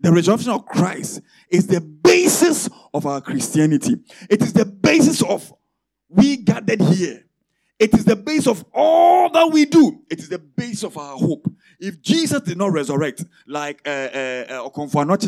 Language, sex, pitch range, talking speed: English, male, 155-255 Hz, 160 wpm